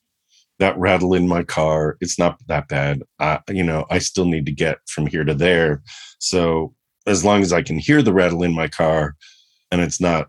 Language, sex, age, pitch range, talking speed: English, male, 50-69, 75-95 Hz, 210 wpm